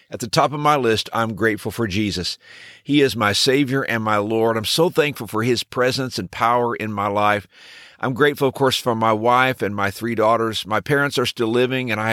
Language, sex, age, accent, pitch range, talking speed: English, male, 50-69, American, 105-135 Hz, 230 wpm